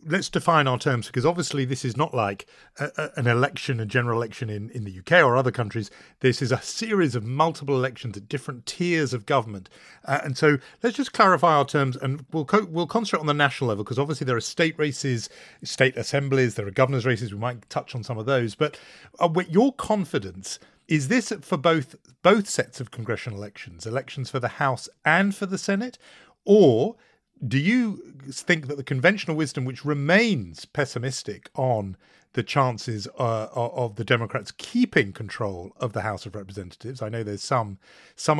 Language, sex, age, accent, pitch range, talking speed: English, male, 40-59, British, 120-160 Hz, 195 wpm